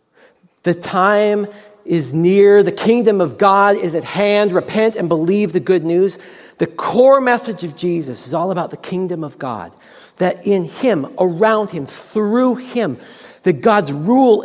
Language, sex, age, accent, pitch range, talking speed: English, male, 50-69, American, 175-230 Hz, 160 wpm